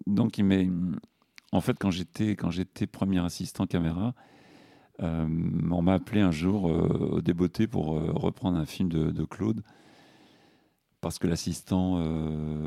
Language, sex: French, male